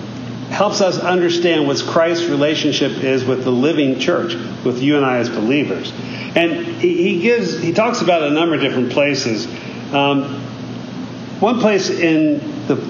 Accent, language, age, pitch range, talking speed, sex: American, English, 50-69, 125-175 Hz, 155 wpm, male